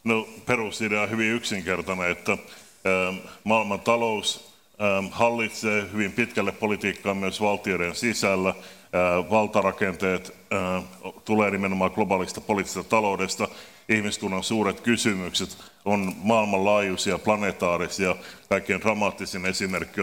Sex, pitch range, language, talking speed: male, 95-110 Hz, Finnish, 90 wpm